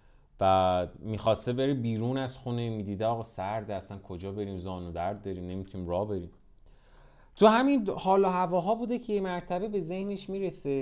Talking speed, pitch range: 155 wpm, 110-175 Hz